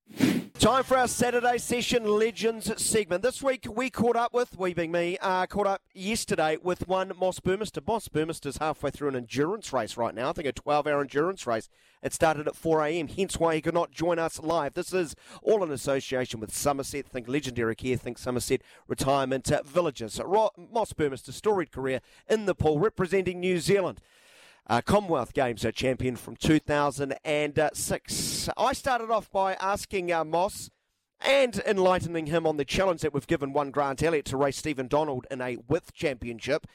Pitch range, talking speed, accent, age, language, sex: 130-185 Hz, 180 wpm, Australian, 40-59, English, male